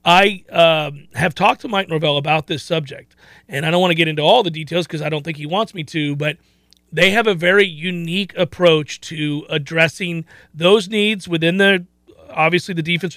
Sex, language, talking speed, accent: male, English, 200 wpm, American